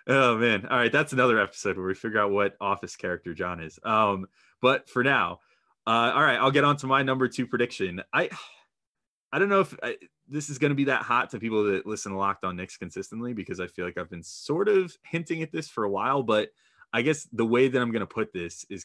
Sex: male